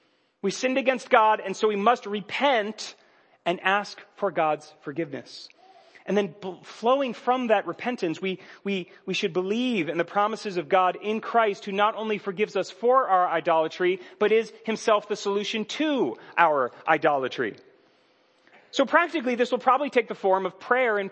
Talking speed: 170 wpm